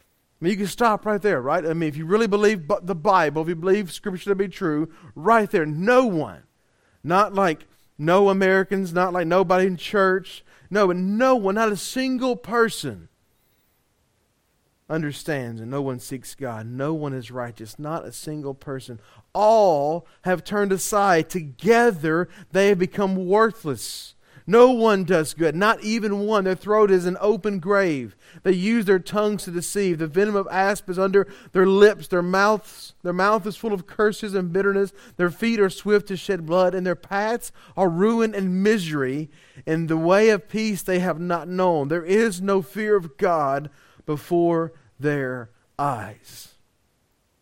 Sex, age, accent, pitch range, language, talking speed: male, 40-59, American, 150-205 Hz, English, 165 wpm